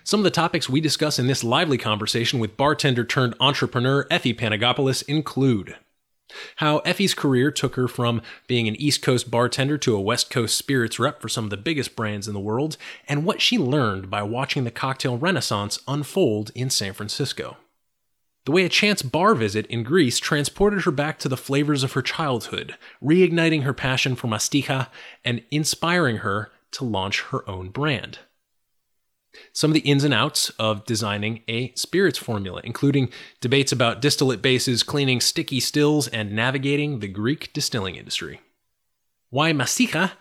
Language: English